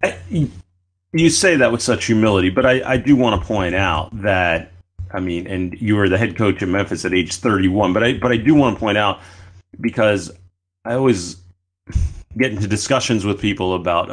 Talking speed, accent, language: 195 wpm, American, English